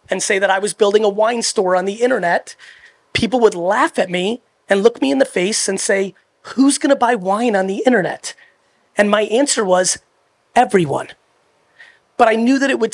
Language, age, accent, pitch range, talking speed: English, 30-49, American, 195-250 Hz, 200 wpm